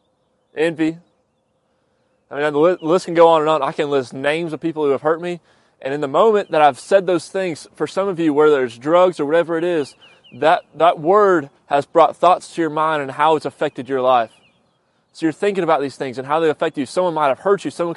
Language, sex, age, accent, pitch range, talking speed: English, male, 20-39, American, 140-170 Hz, 240 wpm